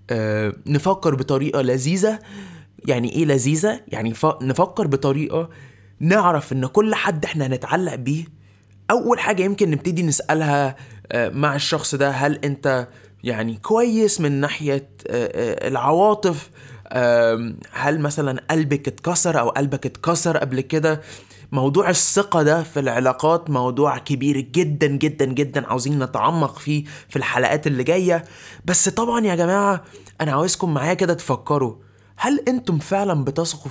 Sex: male